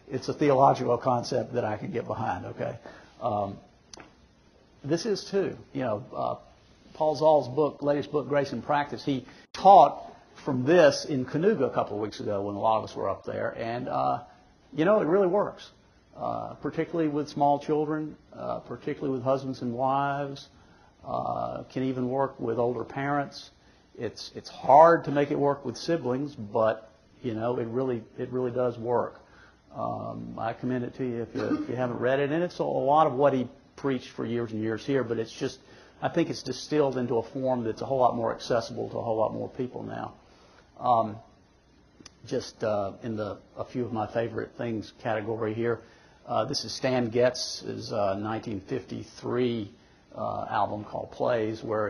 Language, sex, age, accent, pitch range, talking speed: English, male, 50-69, American, 115-145 Hz, 185 wpm